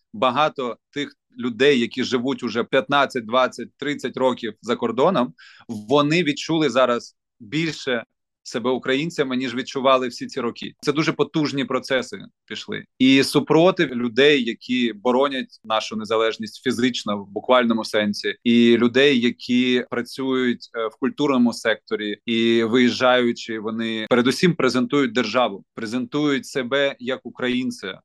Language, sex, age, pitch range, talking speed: Ukrainian, male, 20-39, 120-140 Hz, 120 wpm